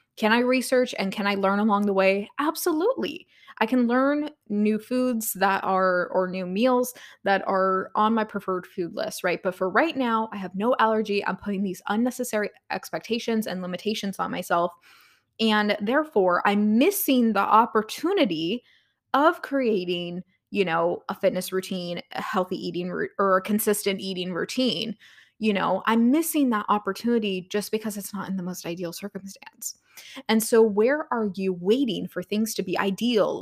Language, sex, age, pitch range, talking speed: English, female, 20-39, 190-235 Hz, 165 wpm